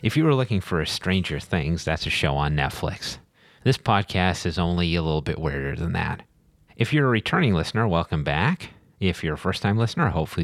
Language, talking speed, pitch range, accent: English, 205 wpm, 80-100 Hz, American